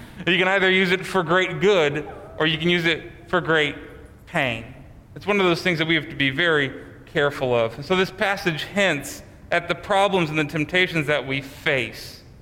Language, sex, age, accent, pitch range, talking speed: English, male, 30-49, American, 140-190 Hz, 205 wpm